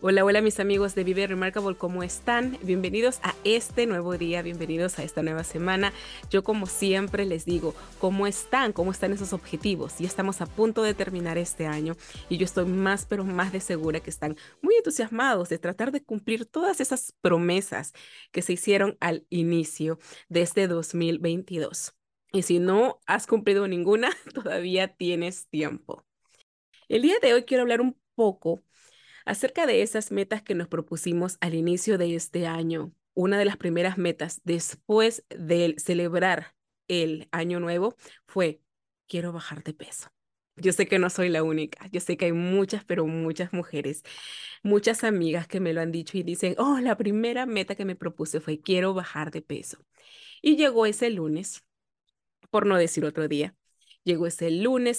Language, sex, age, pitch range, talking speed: Spanish, female, 30-49, 170-205 Hz, 170 wpm